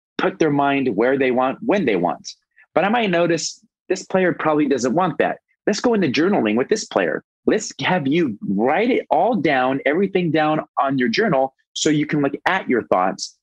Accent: American